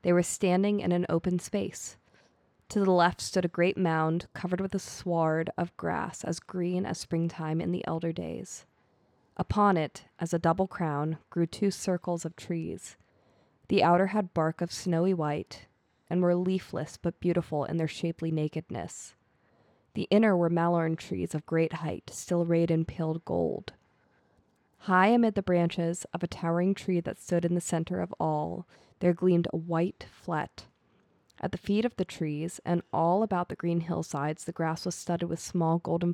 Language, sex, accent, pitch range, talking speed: English, female, American, 160-180 Hz, 180 wpm